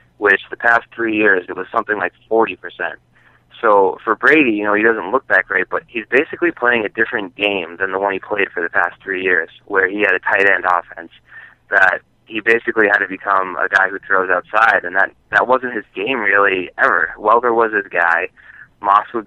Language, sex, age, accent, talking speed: English, male, 20-39, American, 215 wpm